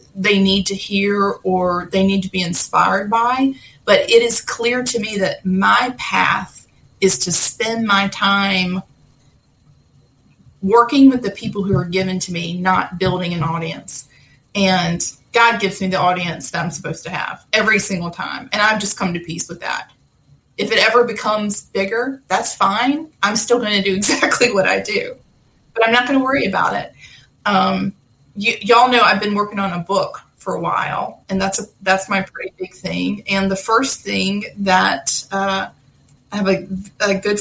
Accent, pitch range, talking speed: American, 185-215 Hz, 185 wpm